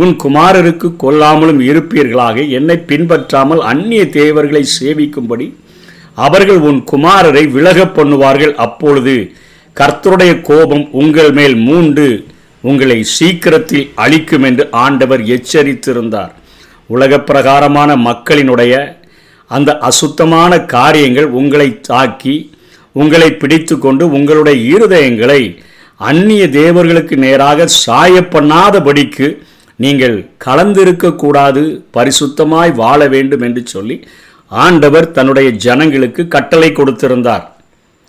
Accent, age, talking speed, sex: native, 50-69, 85 wpm, male